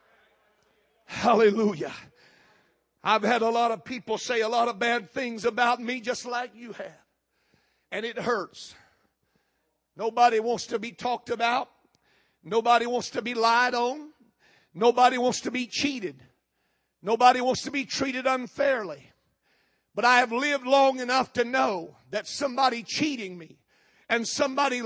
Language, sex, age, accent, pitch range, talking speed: English, male, 50-69, American, 240-290 Hz, 140 wpm